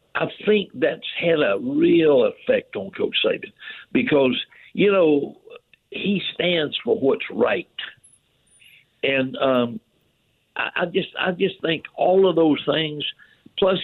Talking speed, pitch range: 135 wpm, 140-215 Hz